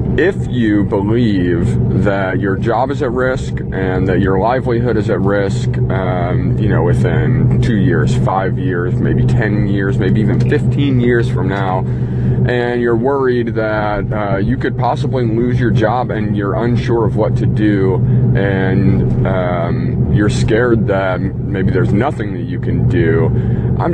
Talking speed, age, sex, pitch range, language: 160 wpm, 30-49, male, 85-120 Hz, English